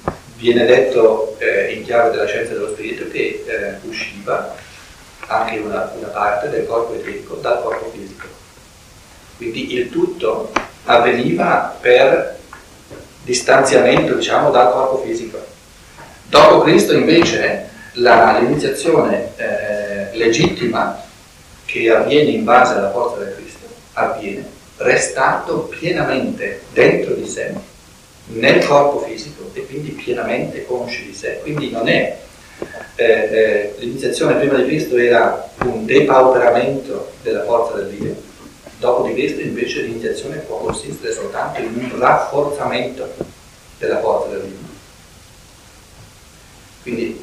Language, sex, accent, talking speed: Italian, male, native, 120 wpm